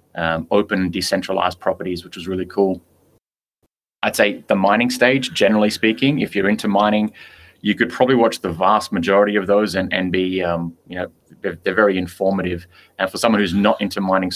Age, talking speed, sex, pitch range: 20-39, 190 wpm, male, 90-105 Hz